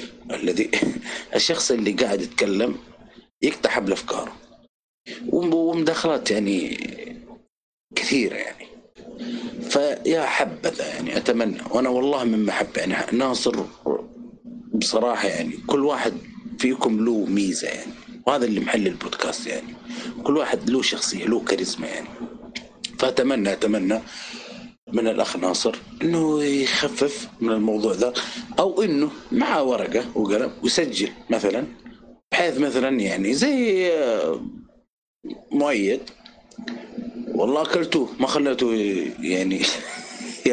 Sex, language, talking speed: male, Arabic, 100 wpm